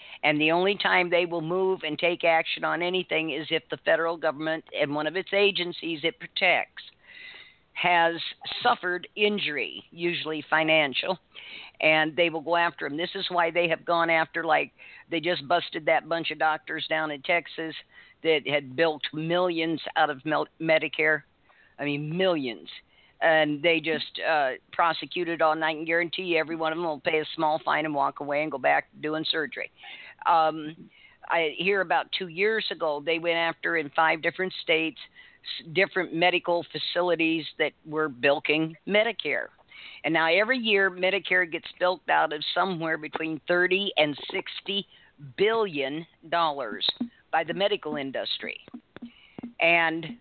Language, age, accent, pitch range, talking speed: English, 50-69, American, 155-190 Hz, 160 wpm